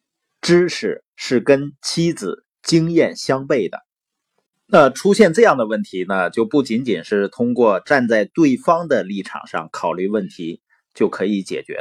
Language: Chinese